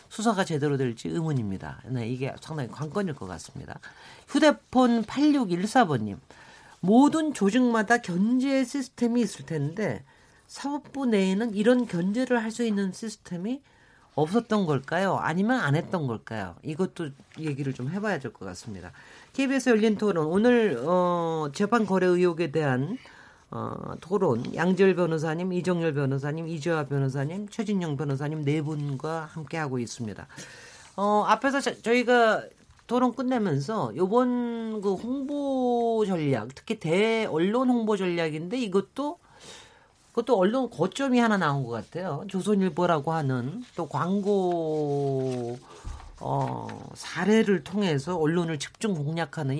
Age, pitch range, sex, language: 40-59, 155-235 Hz, male, Korean